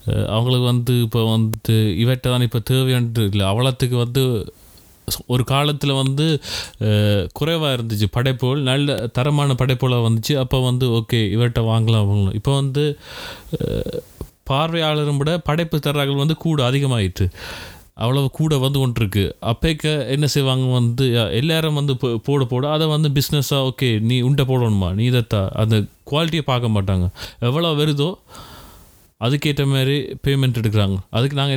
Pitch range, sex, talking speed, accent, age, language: 110-140 Hz, male, 130 wpm, native, 30-49, Tamil